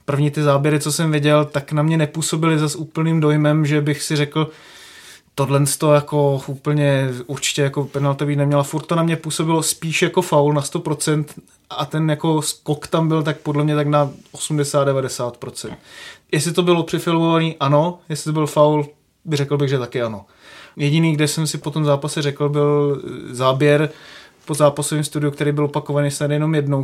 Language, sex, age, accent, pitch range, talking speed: Czech, male, 20-39, native, 140-155 Hz, 180 wpm